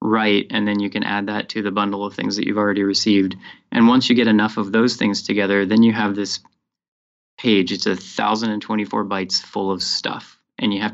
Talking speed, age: 220 wpm, 20-39